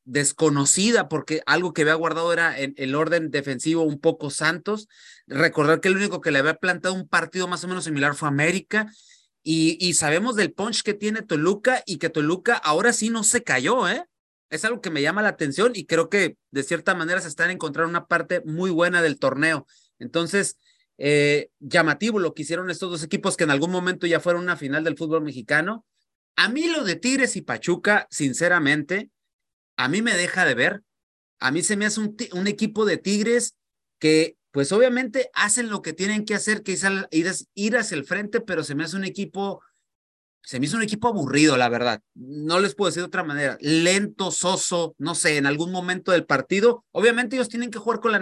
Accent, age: Mexican, 30-49